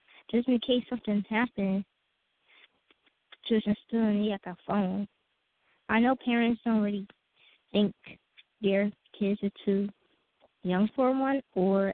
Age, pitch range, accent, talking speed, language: 20-39, 200-235 Hz, American, 125 wpm, English